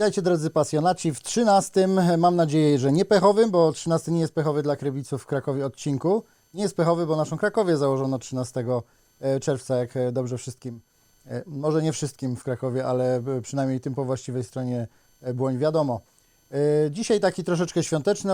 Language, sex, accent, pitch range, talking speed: Polish, male, native, 140-170 Hz, 160 wpm